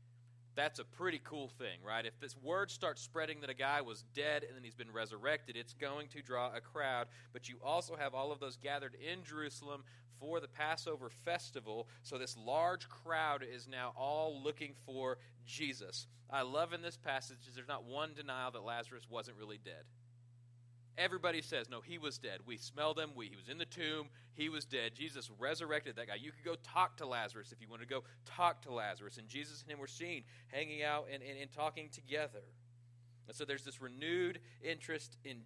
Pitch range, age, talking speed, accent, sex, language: 120-150 Hz, 30-49, 205 wpm, American, male, English